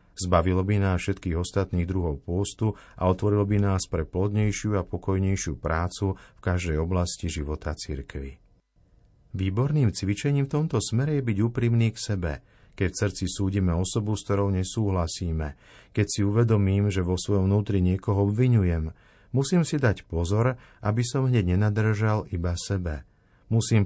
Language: Slovak